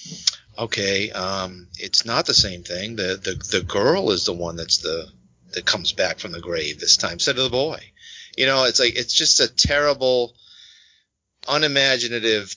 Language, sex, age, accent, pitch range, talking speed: English, male, 40-59, American, 95-125 Hz, 175 wpm